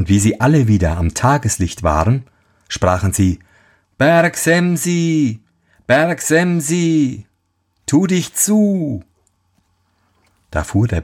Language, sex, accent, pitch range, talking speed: German, male, German, 90-125 Hz, 110 wpm